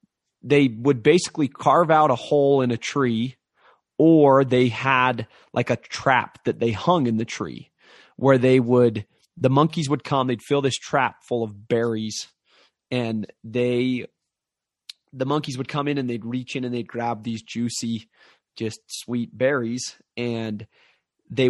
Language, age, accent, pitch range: English, 30-49, American, 110-130 Hz